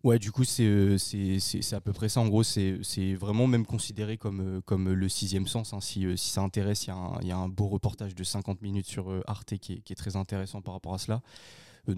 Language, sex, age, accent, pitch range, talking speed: French, male, 20-39, French, 95-105 Hz, 235 wpm